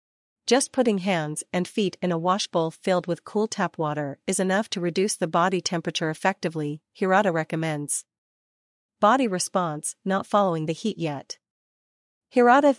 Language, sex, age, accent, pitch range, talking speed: English, female, 40-59, American, 160-200 Hz, 145 wpm